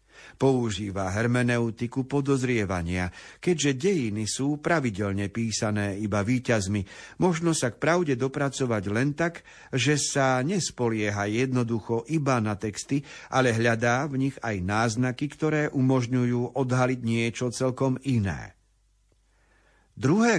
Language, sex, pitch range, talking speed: Slovak, male, 110-135 Hz, 110 wpm